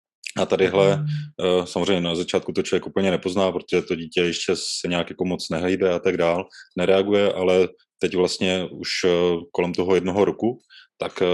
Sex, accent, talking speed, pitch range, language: male, native, 160 wpm, 90-100 Hz, Czech